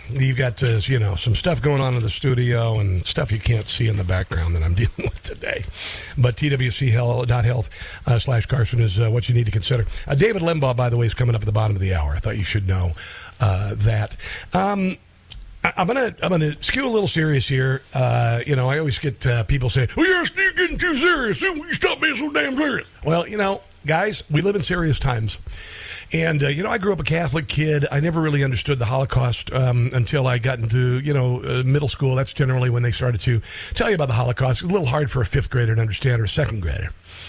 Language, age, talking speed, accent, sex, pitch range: English, 50-69, 245 wpm, American, male, 110-145 Hz